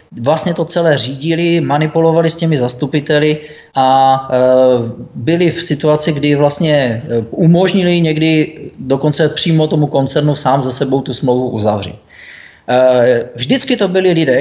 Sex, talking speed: male, 125 wpm